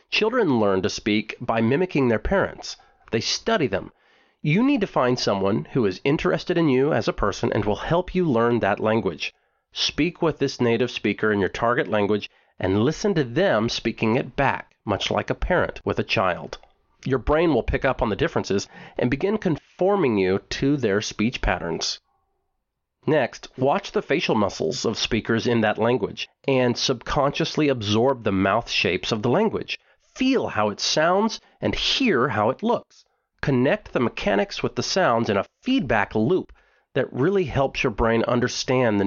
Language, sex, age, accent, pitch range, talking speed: English, male, 40-59, American, 110-165 Hz, 175 wpm